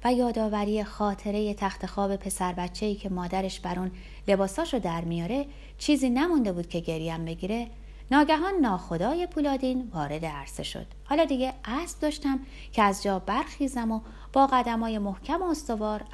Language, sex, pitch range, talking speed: Persian, female, 170-260 Hz, 150 wpm